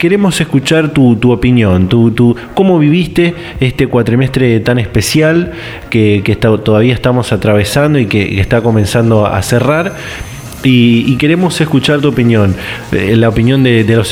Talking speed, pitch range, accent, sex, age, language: 140 wpm, 110-140 Hz, Argentinian, male, 20-39, Spanish